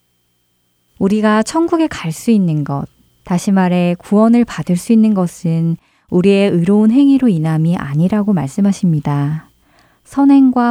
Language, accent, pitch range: Korean, native, 150-210 Hz